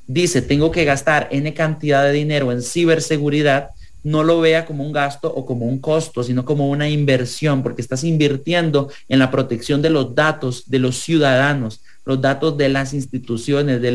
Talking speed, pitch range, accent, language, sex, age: 180 wpm, 125-155 Hz, Mexican, English, male, 40-59